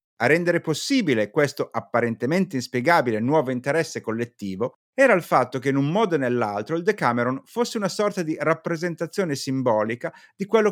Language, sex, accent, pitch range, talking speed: Italian, male, native, 120-205 Hz, 155 wpm